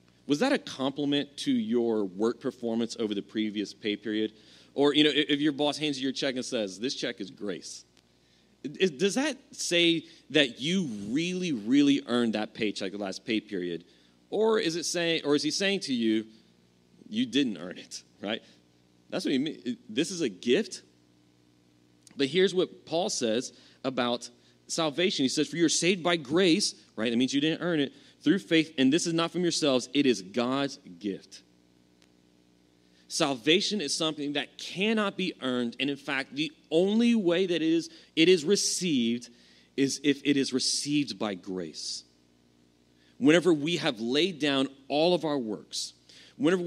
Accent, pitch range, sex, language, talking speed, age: American, 110-170 Hz, male, English, 175 wpm, 30-49